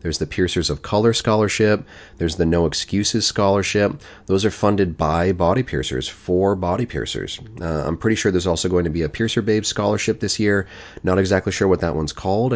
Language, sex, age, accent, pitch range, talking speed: English, male, 30-49, American, 80-100 Hz, 200 wpm